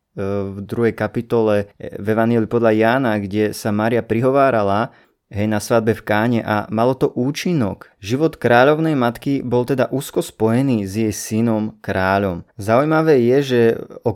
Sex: male